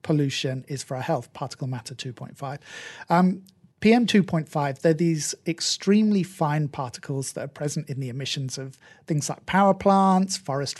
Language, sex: English, male